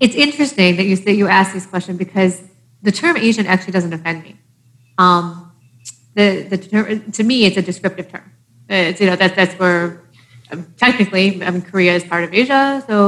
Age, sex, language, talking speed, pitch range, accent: 30-49, female, English, 195 wpm, 165-200 Hz, American